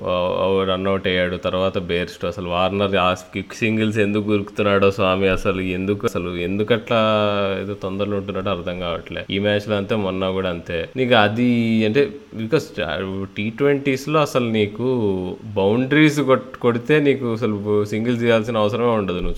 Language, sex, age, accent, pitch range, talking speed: Telugu, male, 20-39, native, 100-140 Hz, 140 wpm